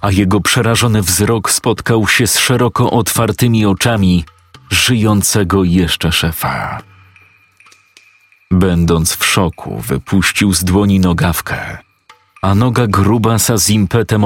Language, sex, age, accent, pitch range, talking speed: Polish, male, 40-59, native, 90-105 Hz, 105 wpm